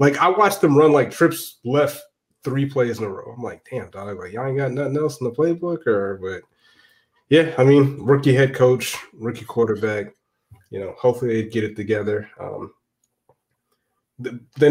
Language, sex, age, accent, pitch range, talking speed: English, male, 20-39, American, 110-140 Hz, 190 wpm